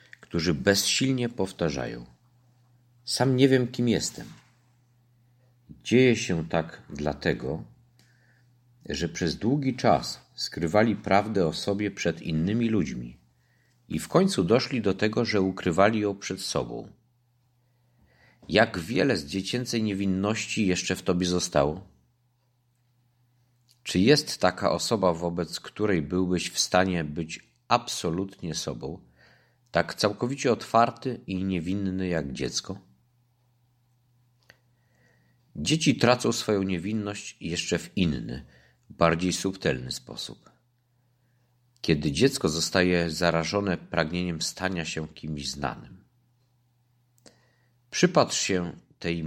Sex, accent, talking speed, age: male, native, 100 wpm, 50-69